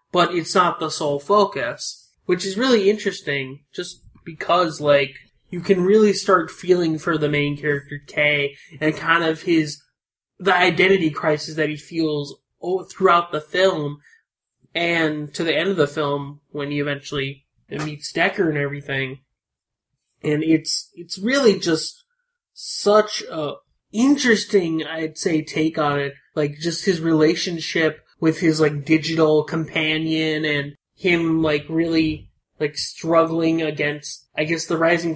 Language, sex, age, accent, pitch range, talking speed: English, male, 20-39, American, 145-175 Hz, 140 wpm